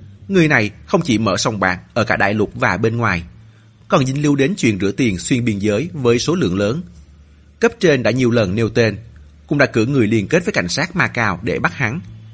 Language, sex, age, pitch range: Vietnamese, male, 30-49, 95-130 Hz